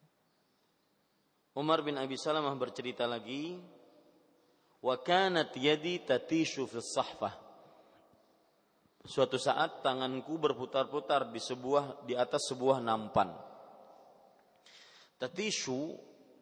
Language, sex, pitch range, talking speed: Malay, male, 125-155 Hz, 80 wpm